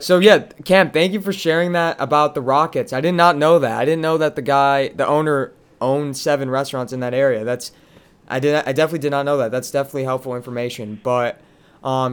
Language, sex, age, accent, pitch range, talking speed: English, male, 20-39, American, 130-165 Hz, 230 wpm